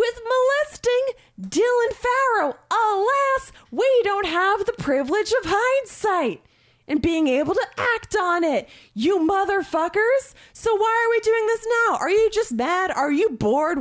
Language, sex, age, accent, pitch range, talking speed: English, female, 20-39, American, 205-335 Hz, 150 wpm